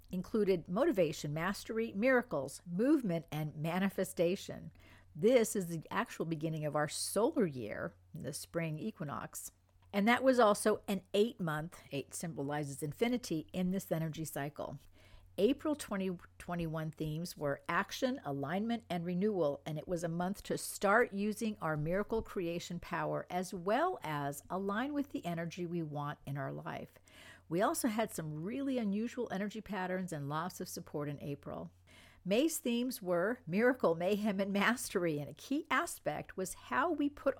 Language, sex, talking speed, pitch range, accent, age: English, female, 150 wpm, 150-215 Hz, American, 50-69